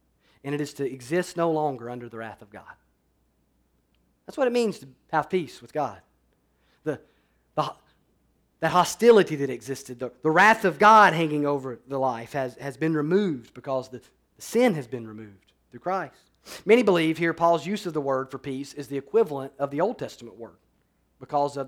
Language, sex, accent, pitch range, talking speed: English, male, American, 125-165 Hz, 190 wpm